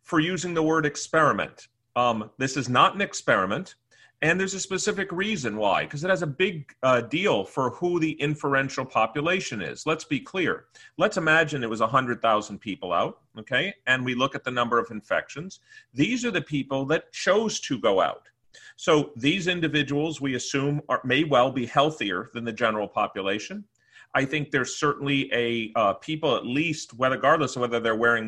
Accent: American